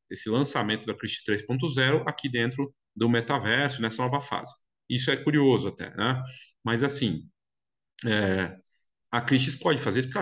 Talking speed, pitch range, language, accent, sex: 155 wpm, 110-145 Hz, Portuguese, Brazilian, male